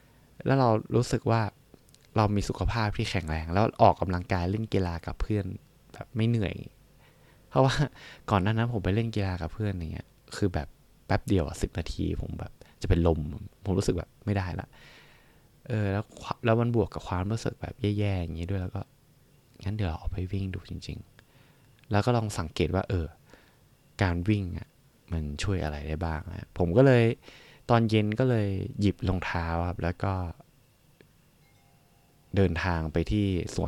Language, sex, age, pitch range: Thai, male, 20-39, 90-120 Hz